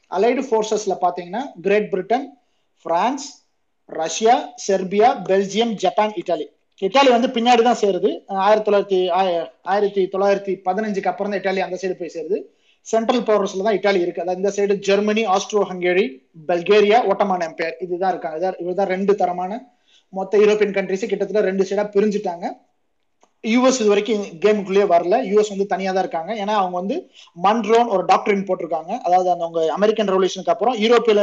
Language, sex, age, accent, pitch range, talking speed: Tamil, male, 20-39, native, 185-220 Hz, 155 wpm